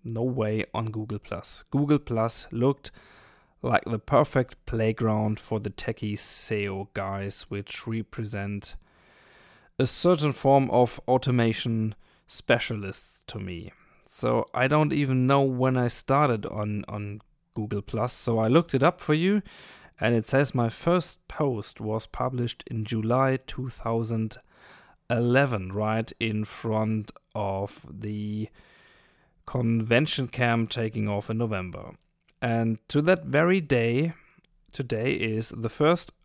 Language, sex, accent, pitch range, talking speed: German, male, German, 110-135 Hz, 125 wpm